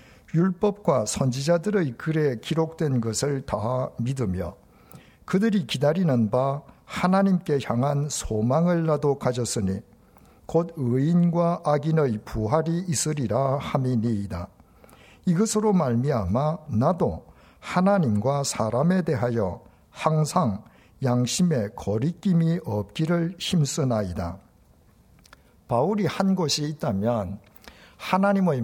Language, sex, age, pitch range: Korean, male, 60-79, 115-170 Hz